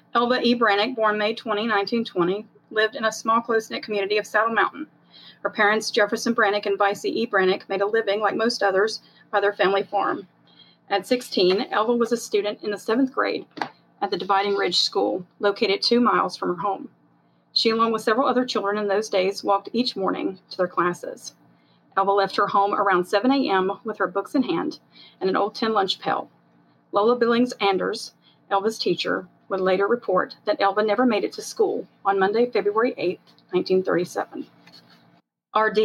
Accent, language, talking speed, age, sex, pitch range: American, English, 180 wpm, 40-59, female, 190-220 Hz